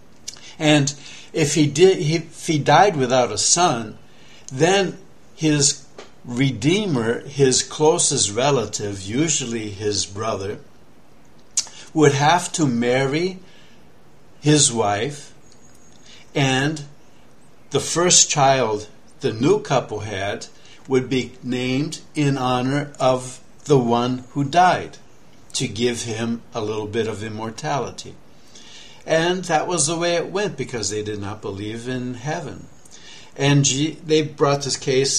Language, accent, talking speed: English, American, 120 wpm